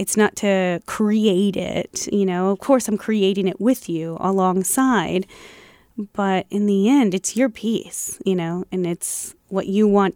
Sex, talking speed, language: female, 170 wpm, English